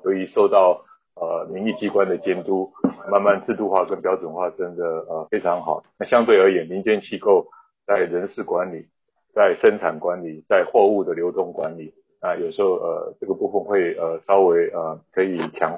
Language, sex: Chinese, male